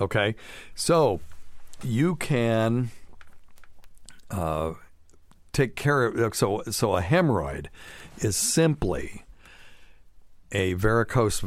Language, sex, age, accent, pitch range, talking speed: English, male, 60-79, American, 85-110 Hz, 85 wpm